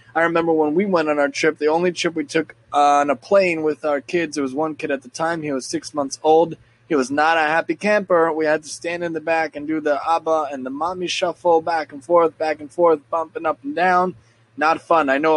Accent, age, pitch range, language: American, 20-39, 145-175 Hz, English